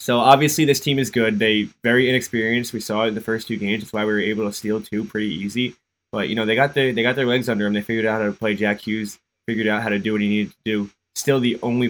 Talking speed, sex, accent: 305 wpm, male, American